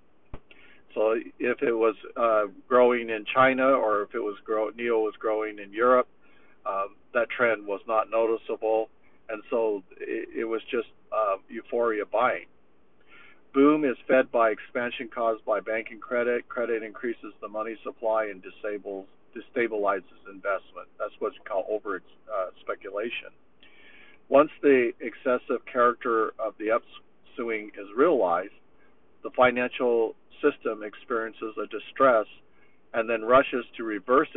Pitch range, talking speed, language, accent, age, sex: 110-125 Hz, 135 wpm, English, American, 50-69, male